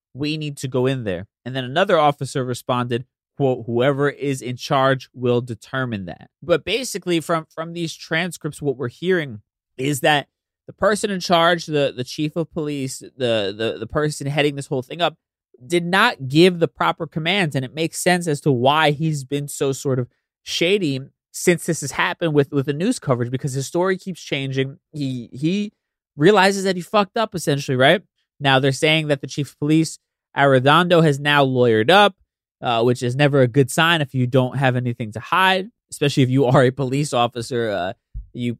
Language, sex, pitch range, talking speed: English, male, 125-155 Hz, 195 wpm